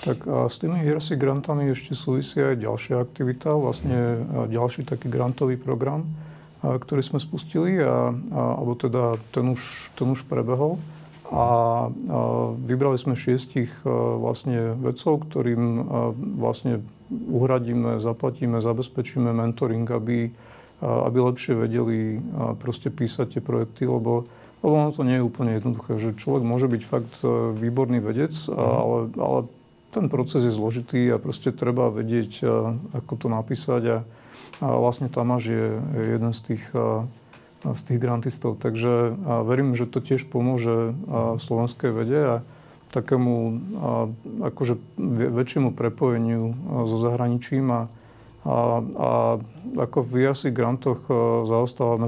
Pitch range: 115-130 Hz